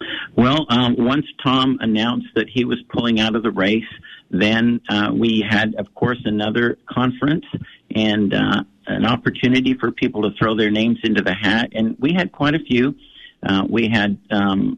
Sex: male